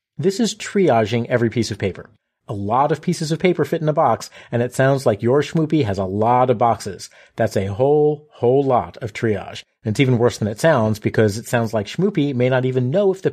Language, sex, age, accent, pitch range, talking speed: English, male, 40-59, American, 115-165 Hz, 235 wpm